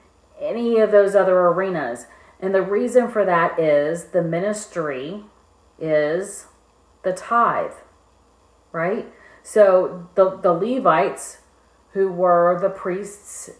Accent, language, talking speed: American, English, 110 wpm